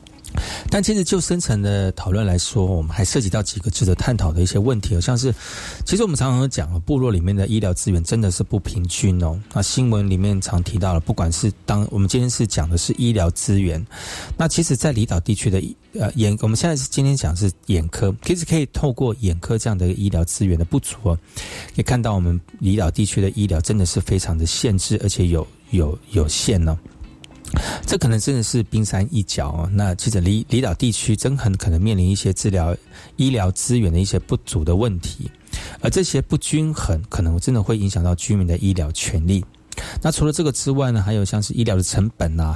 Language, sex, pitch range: Chinese, male, 90-120 Hz